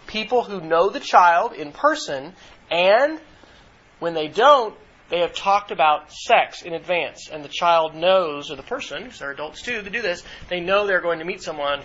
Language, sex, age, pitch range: English, male, 40-59, 165-210 Hz